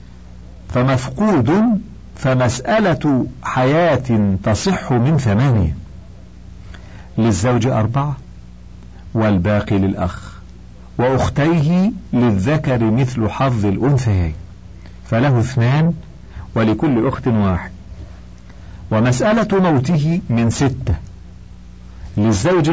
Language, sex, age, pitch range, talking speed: Arabic, male, 50-69, 95-150 Hz, 65 wpm